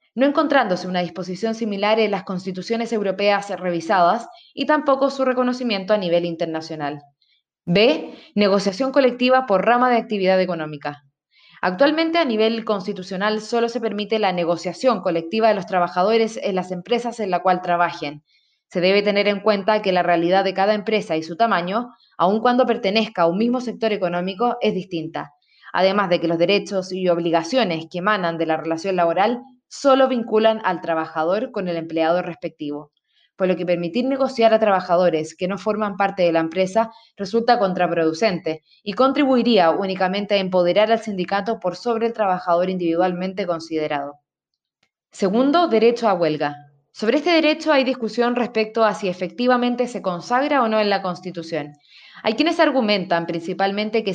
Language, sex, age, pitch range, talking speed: Spanish, female, 20-39, 175-230 Hz, 160 wpm